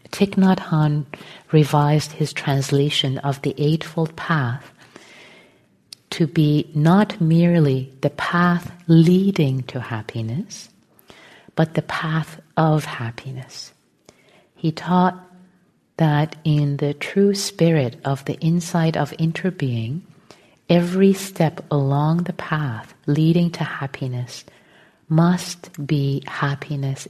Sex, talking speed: female, 100 wpm